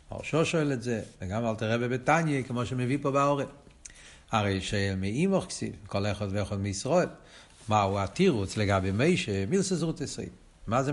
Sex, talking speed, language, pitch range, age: male, 155 wpm, Hebrew, 100-140 Hz, 60-79